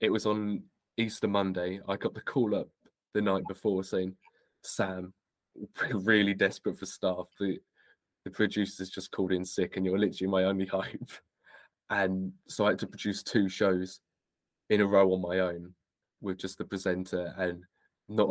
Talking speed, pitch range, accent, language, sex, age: 170 wpm, 90-105 Hz, British, English, male, 20-39